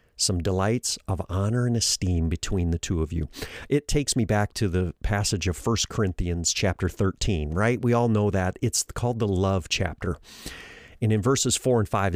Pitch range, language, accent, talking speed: 95-120 Hz, English, American, 190 wpm